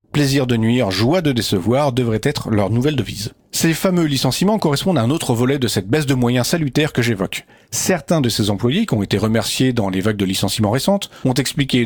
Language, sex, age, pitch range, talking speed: French, male, 40-59, 115-150 Hz, 220 wpm